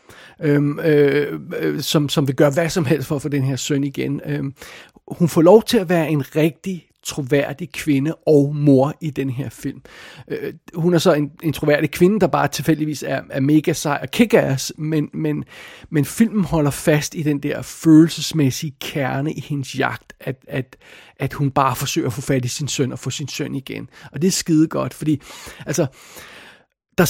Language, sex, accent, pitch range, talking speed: Danish, male, native, 145-170 Hz, 180 wpm